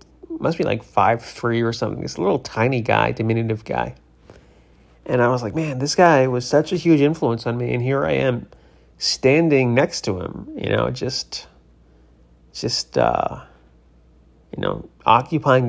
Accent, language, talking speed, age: American, English, 160 wpm, 30-49